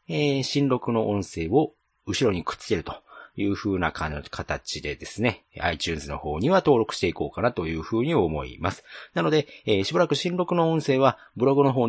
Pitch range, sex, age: 85-135 Hz, male, 40-59